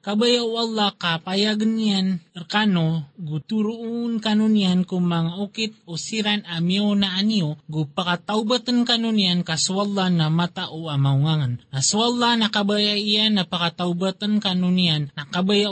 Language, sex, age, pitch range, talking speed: Filipino, male, 20-39, 175-215 Hz, 120 wpm